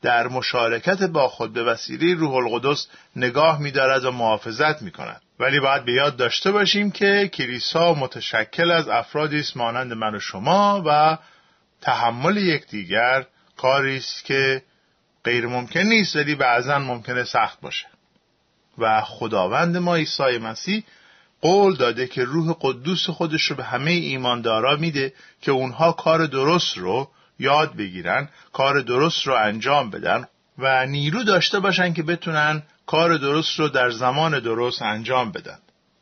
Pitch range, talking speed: 125-170 Hz, 145 wpm